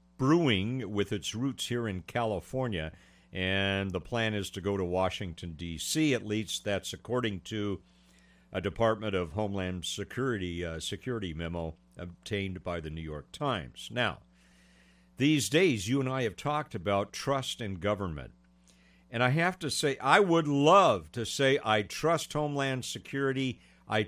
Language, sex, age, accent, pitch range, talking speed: English, male, 50-69, American, 90-135 Hz, 155 wpm